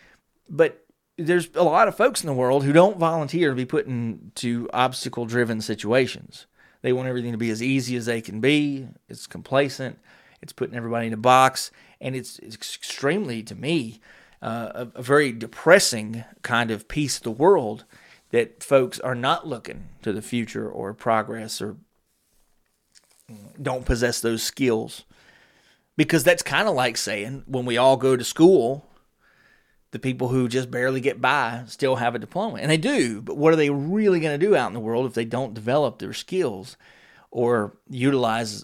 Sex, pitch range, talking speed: male, 115-145 Hz, 180 wpm